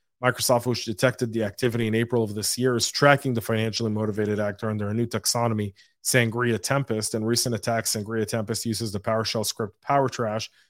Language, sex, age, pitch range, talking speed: English, male, 30-49, 110-125 Hz, 180 wpm